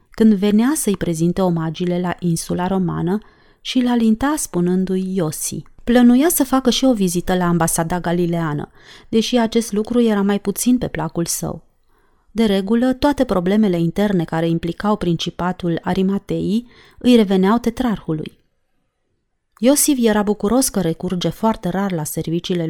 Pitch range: 175-225 Hz